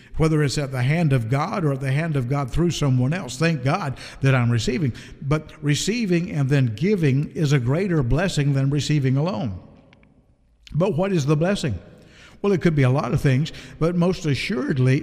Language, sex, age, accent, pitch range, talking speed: English, male, 50-69, American, 130-165 Hz, 195 wpm